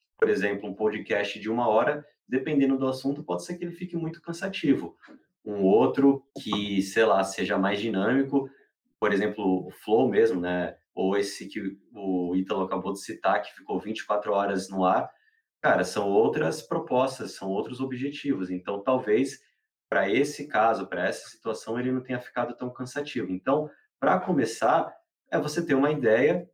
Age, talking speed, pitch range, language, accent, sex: 30-49, 165 wpm, 110-145 Hz, Portuguese, Brazilian, male